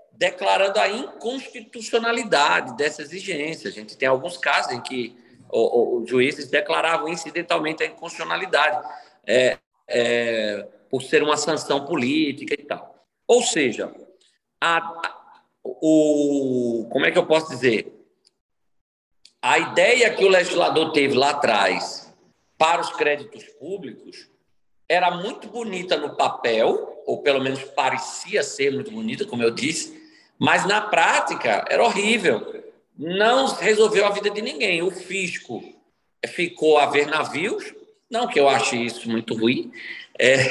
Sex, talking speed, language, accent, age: male, 125 wpm, Portuguese, Brazilian, 50-69